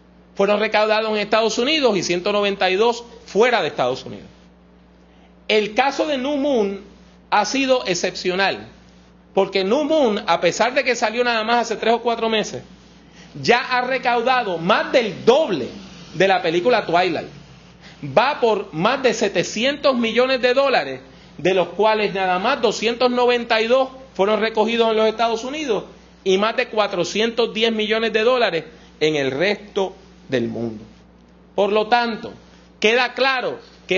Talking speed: 145 wpm